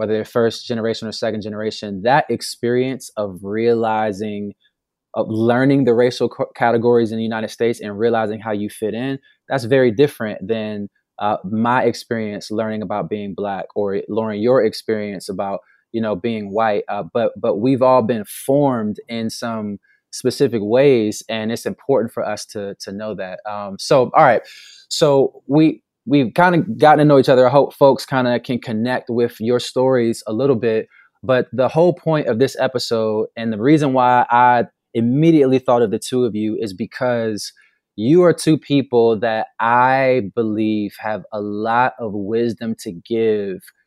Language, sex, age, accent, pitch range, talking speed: English, male, 20-39, American, 110-125 Hz, 175 wpm